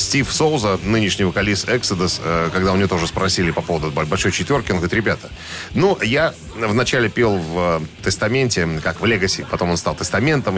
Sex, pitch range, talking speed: male, 90-120 Hz, 170 wpm